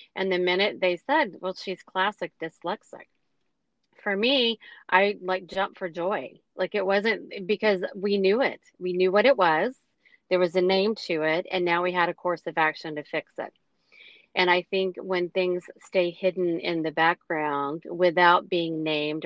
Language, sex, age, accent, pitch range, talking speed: English, female, 40-59, American, 160-190 Hz, 180 wpm